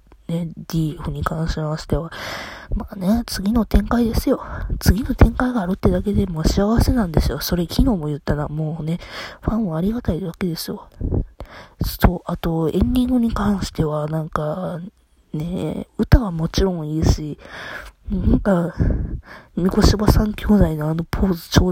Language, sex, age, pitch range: Japanese, female, 20-39, 165-210 Hz